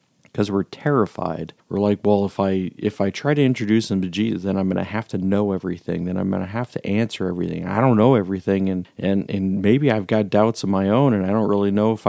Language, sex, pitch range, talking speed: English, male, 95-110 Hz, 260 wpm